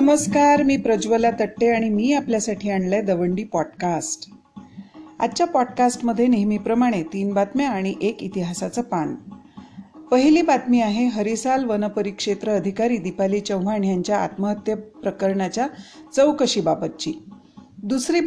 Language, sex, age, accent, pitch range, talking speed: Marathi, female, 40-59, native, 200-265 Hz, 105 wpm